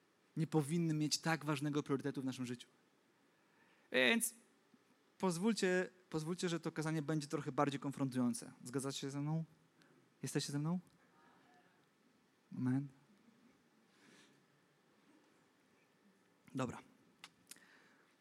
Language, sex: Polish, male